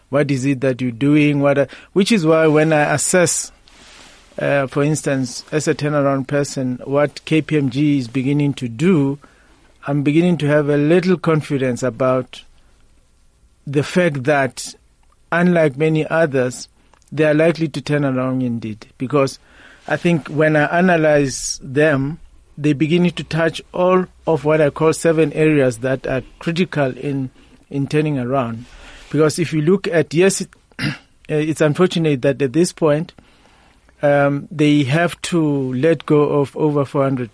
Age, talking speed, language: 50-69, 150 wpm, English